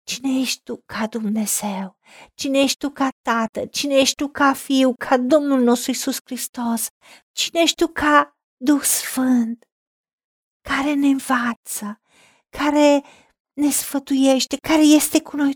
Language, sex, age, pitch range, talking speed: Romanian, female, 50-69, 230-275 Hz, 140 wpm